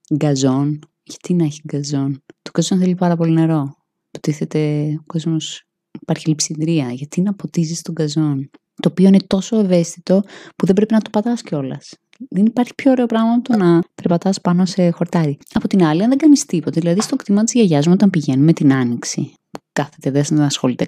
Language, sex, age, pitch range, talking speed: Greek, female, 20-39, 150-205 Hz, 185 wpm